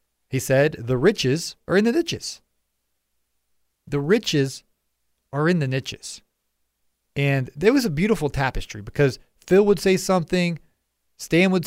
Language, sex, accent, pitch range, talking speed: English, male, American, 125-175 Hz, 140 wpm